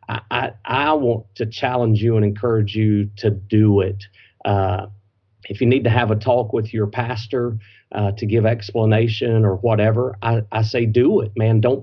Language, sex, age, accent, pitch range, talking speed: English, male, 40-59, American, 105-120 Hz, 185 wpm